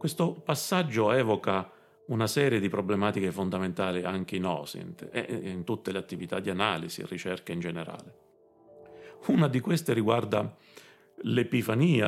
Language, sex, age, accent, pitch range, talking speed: Italian, male, 40-59, native, 95-135 Hz, 135 wpm